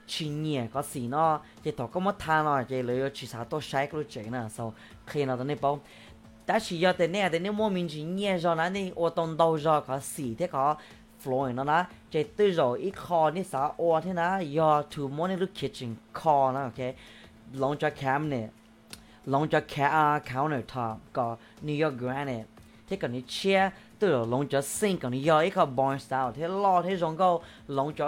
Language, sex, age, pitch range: English, female, 20-39, 125-165 Hz